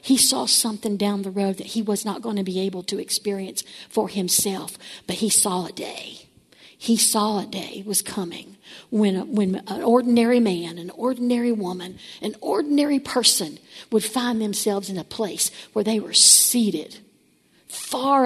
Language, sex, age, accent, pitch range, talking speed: English, female, 50-69, American, 195-235 Hz, 170 wpm